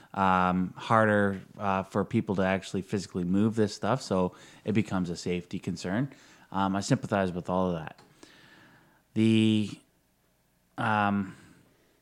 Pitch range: 95-125 Hz